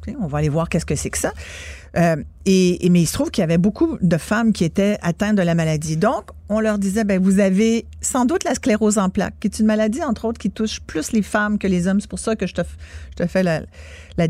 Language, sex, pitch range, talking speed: French, female, 170-220 Hz, 280 wpm